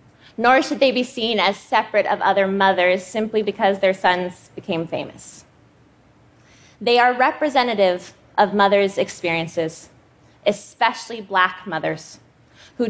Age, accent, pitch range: 20-39, American, 180-240 Hz